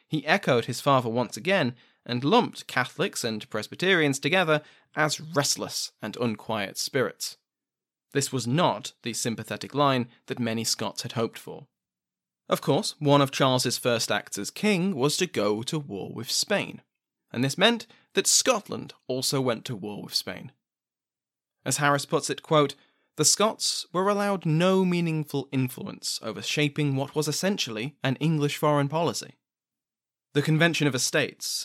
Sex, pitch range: male, 120-160 Hz